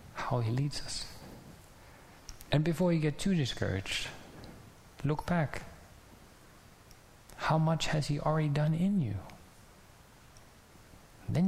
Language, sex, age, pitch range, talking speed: English, male, 30-49, 110-150 Hz, 110 wpm